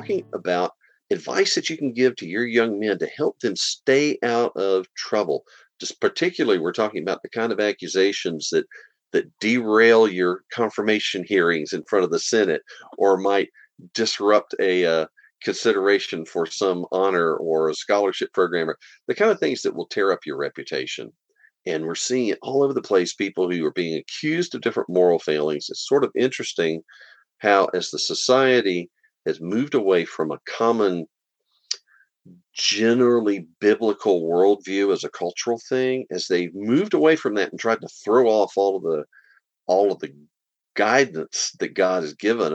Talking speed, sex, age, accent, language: 170 wpm, male, 50-69, American, English